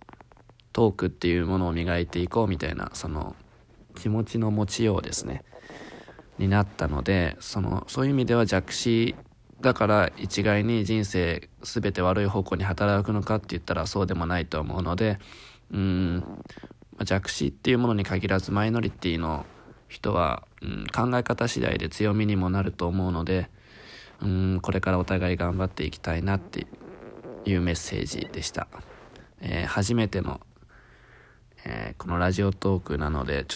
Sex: male